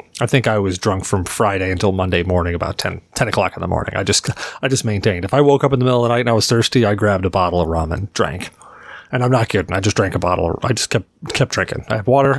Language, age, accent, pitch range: English, 30-49, American, 100-130 Hz